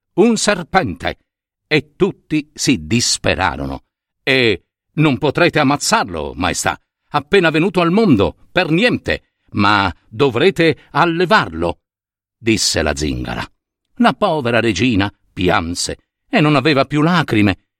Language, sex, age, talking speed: Italian, male, 50-69, 110 wpm